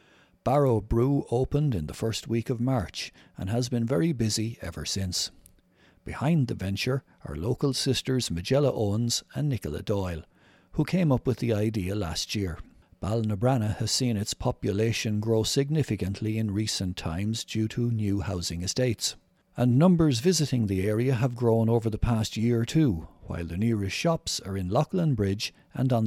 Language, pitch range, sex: English, 100-130 Hz, male